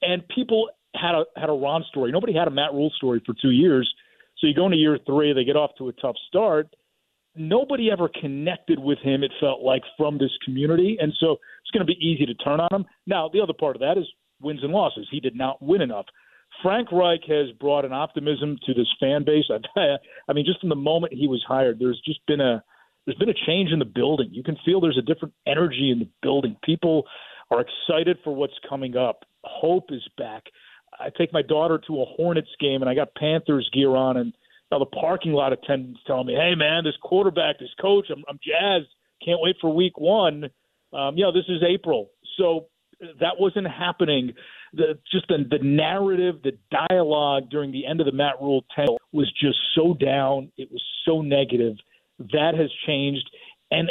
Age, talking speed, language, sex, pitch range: 40-59, 215 wpm, English, male, 140-175 Hz